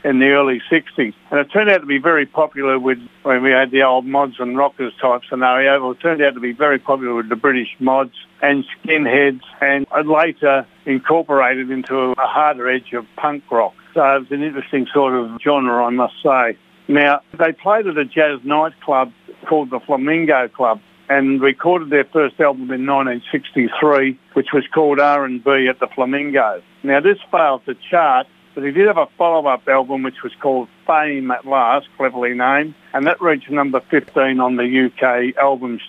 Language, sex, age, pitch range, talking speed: English, male, 60-79, 125-150 Hz, 185 wpm